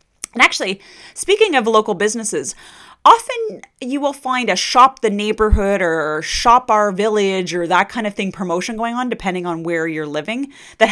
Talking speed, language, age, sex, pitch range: 175 wpm, English, 30-49, female, 180-245 Hz